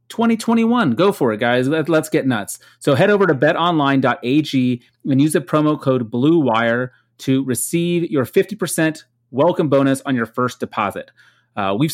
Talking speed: 165 wpm